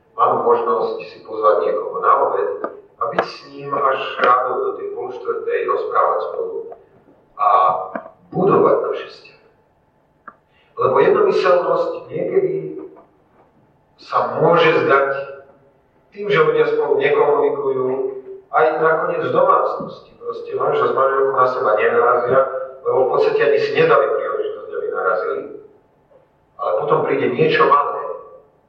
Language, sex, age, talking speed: Slovak, male, 40-59, 120 wpm